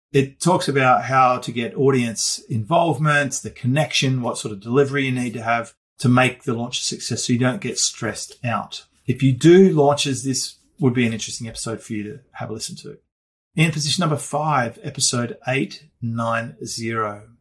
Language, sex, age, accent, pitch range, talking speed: English, male, 40-59, Australian, 115-140 Hz, 185 wpm